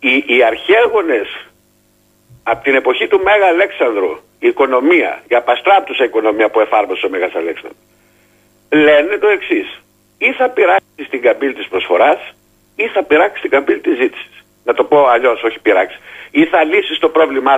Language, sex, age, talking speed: Greek, male, 50-69, 155 wpm